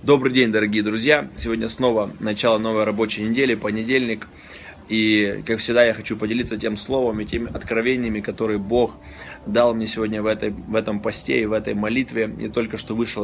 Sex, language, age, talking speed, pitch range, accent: male, Russian, 20-39, 180 wpm, 110-125 Hz, native